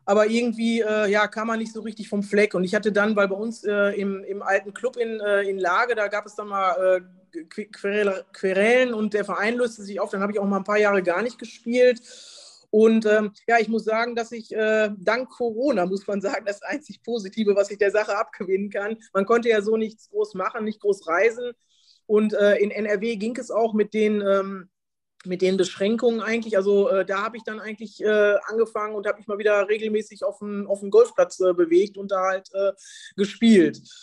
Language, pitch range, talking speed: German, 200-230 Hz, 220 wpm